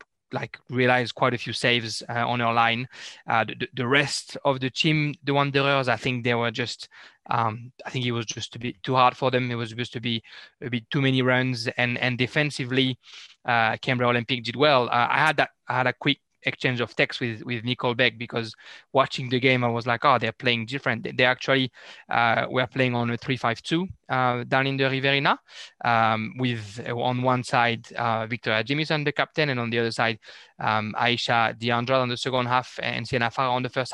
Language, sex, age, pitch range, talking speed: English, male, 20-39, 120-135 Hz, 220 wpm